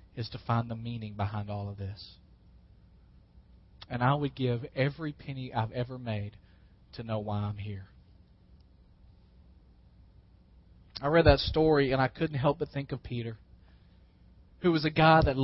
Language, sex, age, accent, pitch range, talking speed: English, male, 40-59, American, 105-160 Hz, 155 wpm